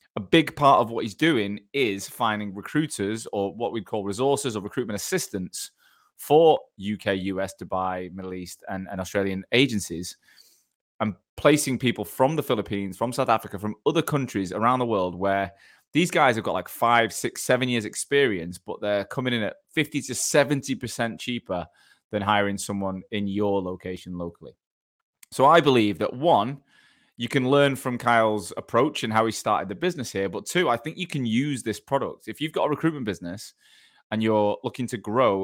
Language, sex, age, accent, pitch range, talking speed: English, male, 20-39, British, 100-130 Hz, 185 wpm